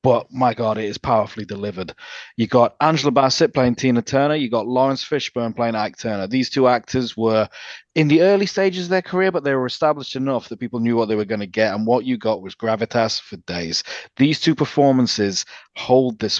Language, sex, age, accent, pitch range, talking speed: English, male, 30-49, British, 110-135 Hz, 215 wpm